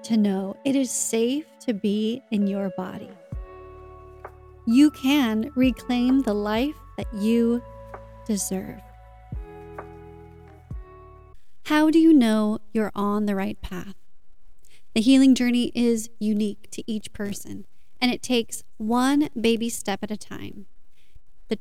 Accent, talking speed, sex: American, 125 wpm, female